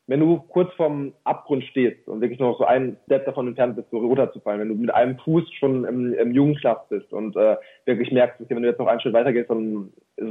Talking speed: 240 wpm